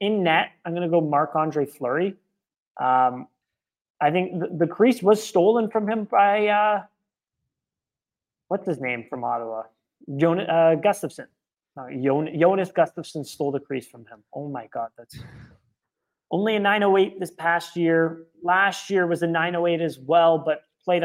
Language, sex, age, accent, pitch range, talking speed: English, male, 30-49, American, 150-200 Hz, 160 wpm